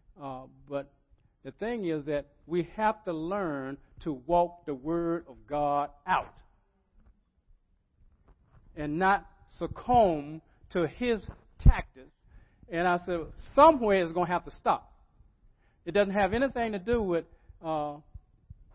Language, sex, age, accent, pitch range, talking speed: English, male, 50-69, American, 145-180 Hz, 130 wpm